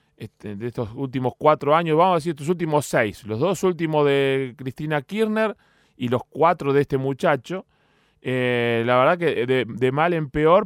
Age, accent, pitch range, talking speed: 20-39, Argentinian, 125-160 Hz, 185 wpm